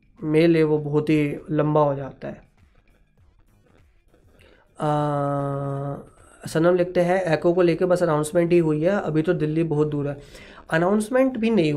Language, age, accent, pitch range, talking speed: Hindi, 20-39, native, 150-180 Hz, 155 wpm